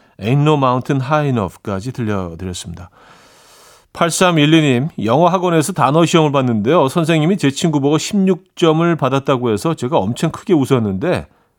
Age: 40-59